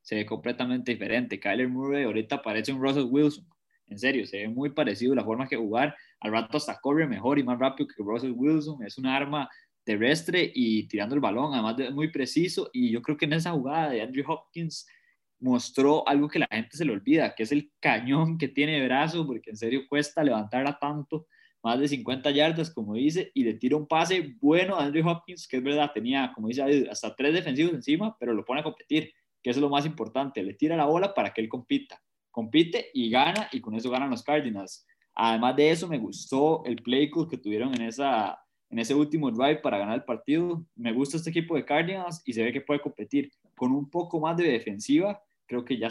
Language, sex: Spanish, male